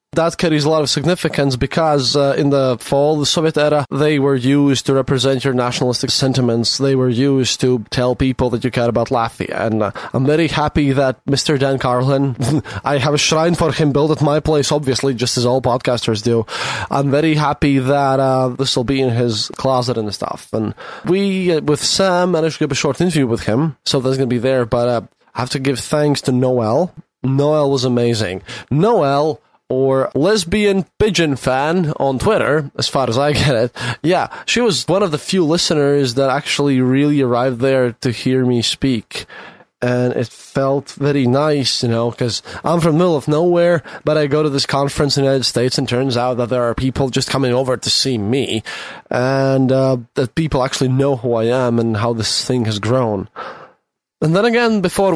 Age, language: 20-39, English